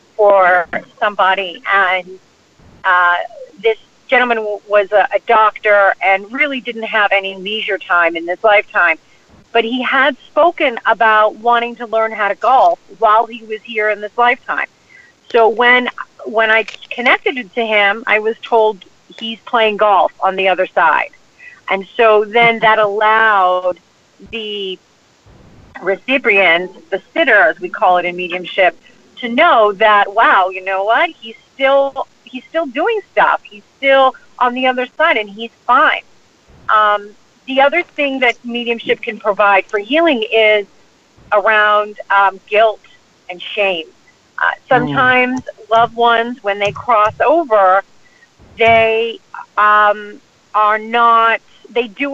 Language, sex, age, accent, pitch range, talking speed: English, female, 40-59, American, 200-245 Hz, 145 wpm